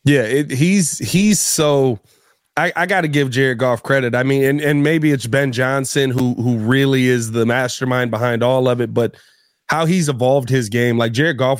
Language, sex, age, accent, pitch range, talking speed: English, male, 20-39, American, 125-165 Hz, 205 wpm